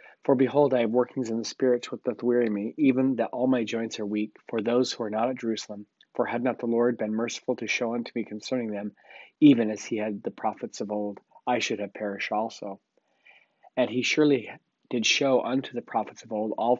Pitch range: 105-125 Hz